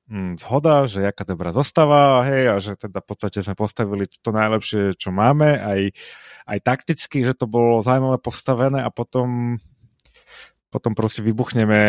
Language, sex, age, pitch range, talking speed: Slovak, male, 30-49, 105-125 Hz, 145 wpm